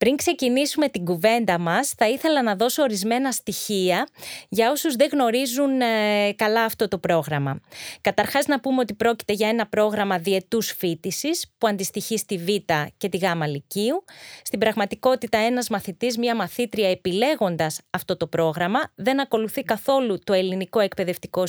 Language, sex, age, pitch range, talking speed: Greek, female, 20-39, 185-245 Hz, 150 wpm